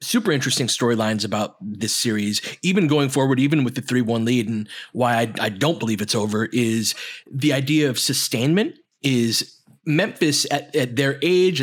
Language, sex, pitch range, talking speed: English, male, 120-150 Hz, 170 wpm